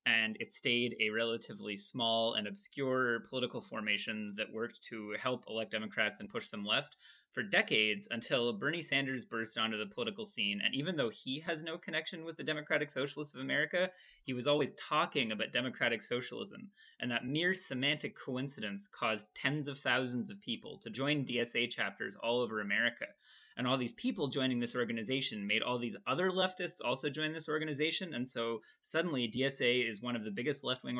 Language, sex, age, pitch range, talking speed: English, male, 20-39, 115-145 Hz, 180 wpm